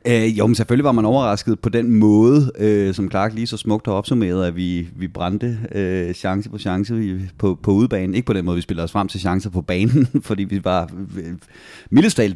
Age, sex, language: 30-49, male, Danish